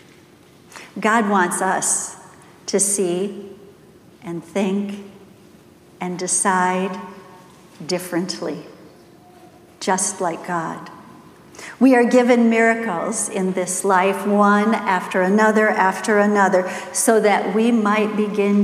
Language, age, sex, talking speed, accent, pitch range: English, 50-69, female, 95 wpm, American, 185-210 Hz